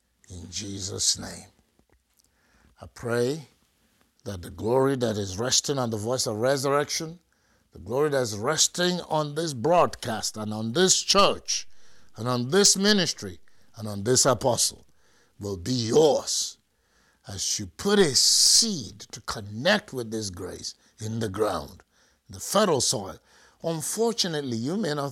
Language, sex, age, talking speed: English, male, 60-79, 140 wpm